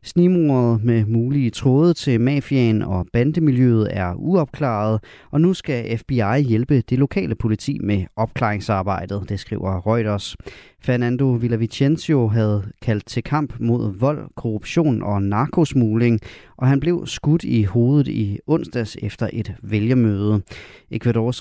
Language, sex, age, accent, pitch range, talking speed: Danish, male, 30-49, native, 105-135 Hz, 130 wpm